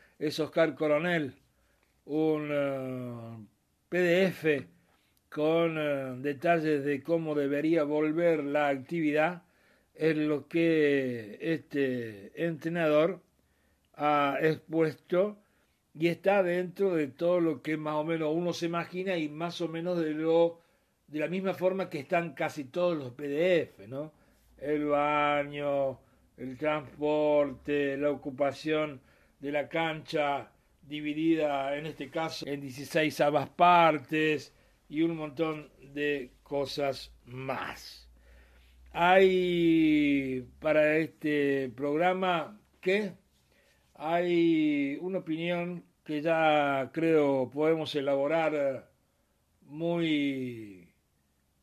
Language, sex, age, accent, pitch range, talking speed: Spanish, male, 60-79, Argentinian, 140-165 Hz, 105 wpm